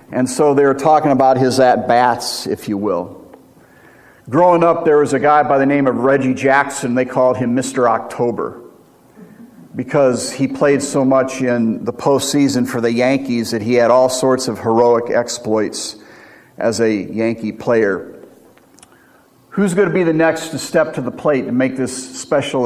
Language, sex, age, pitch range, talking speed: English, male, 50-69, 125-155 Hz, 175 wpm